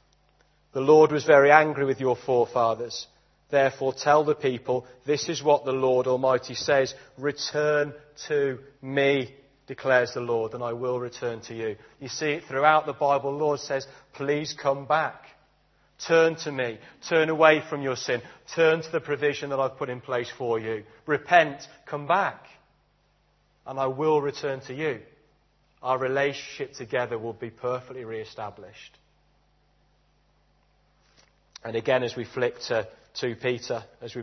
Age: 40-59